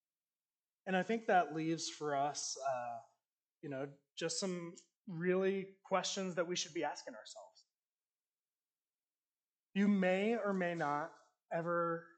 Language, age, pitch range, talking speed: English, 30-49, 140-190 Hz, 130 wpm